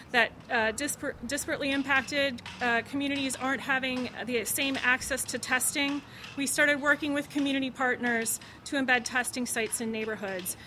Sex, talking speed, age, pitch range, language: female, 140 wpm, 30-49, 230-280 Hz, English